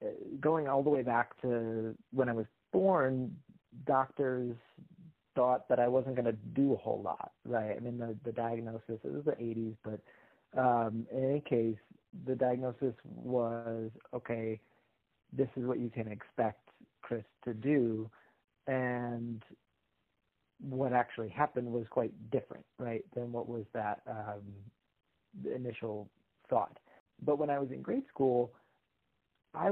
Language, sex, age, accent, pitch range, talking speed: English, male, 40-59, American, 115-130 Hz, 145 wpm